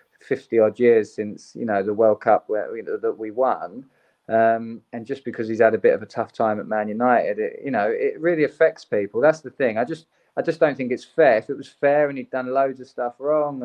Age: 20-39